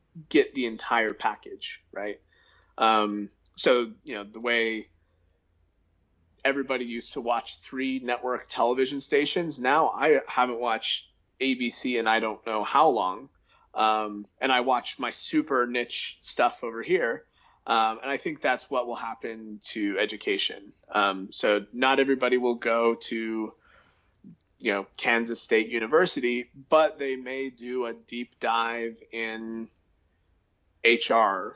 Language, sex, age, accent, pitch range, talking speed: English, male, 30-49, American, 110-125 Hz, 135 wpm